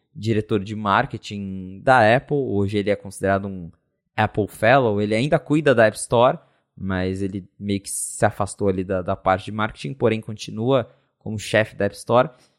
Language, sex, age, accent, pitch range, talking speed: Portuguese, male, 20-39, Brazilian, 110-145 Hz, 175 wpm